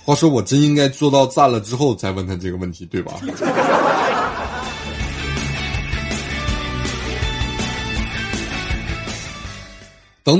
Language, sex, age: Chinese, male, 30-49